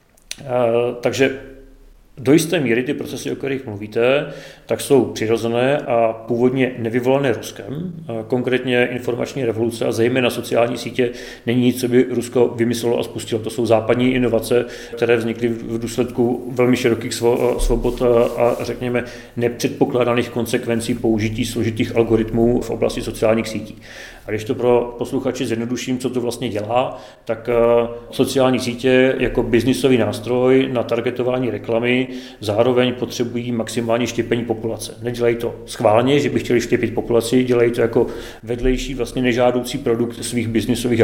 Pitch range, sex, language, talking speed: 115-125 Hz, male, Czech, 135 wpm